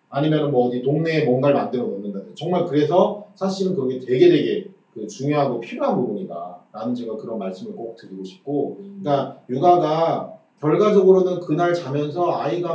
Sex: male